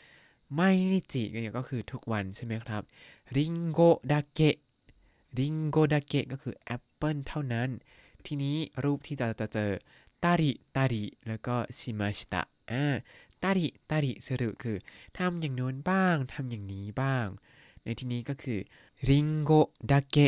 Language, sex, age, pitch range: Thai, male, 20-39, 110-150 Hz